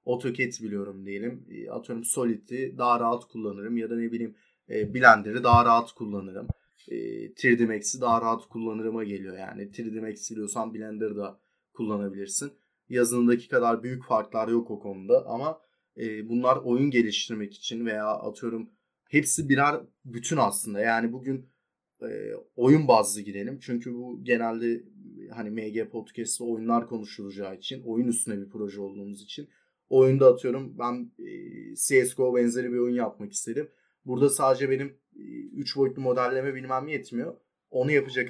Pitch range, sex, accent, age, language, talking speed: 110-130 Hz, male, native, 30-49, Turkish, 140 wpm